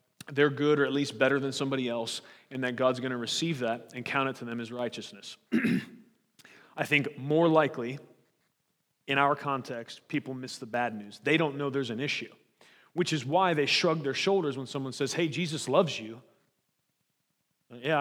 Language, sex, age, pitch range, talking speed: English, male, 30-49, 135-170 Hz, 185 wpm